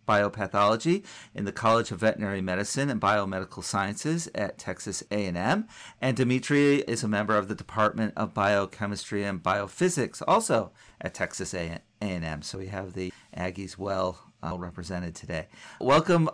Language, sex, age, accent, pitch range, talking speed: English, male, 40-59, American, 105-150 Hz, 145 wpm